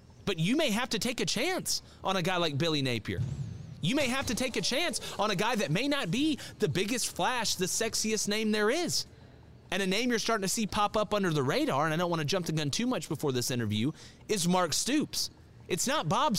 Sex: male